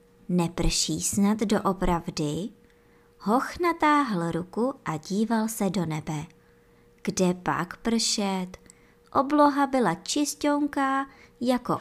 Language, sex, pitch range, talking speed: Czech, male, 165-240 Hz, 95 wpm